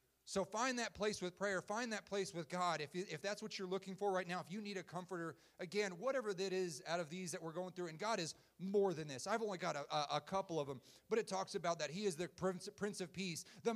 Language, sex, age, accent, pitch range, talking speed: English, male, 30-49, American, 180-220 Hz, 280 wpm